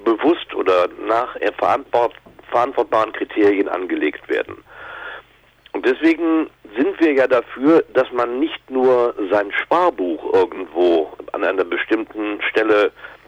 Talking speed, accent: 110 wpm, German